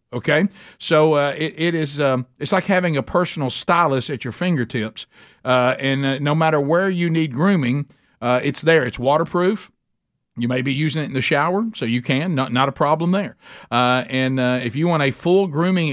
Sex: male